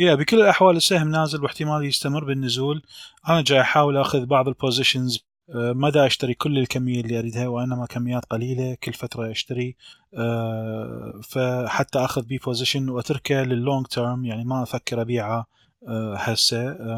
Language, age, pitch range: Arabic, 20-39, 115-130 Hz